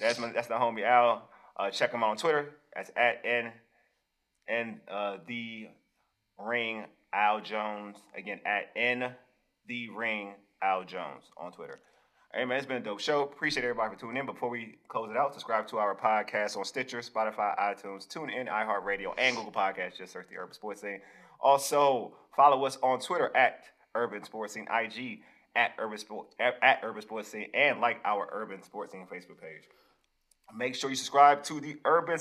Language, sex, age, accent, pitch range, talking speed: English, male, 30-49, American, 110-140 Hz, 185 wpm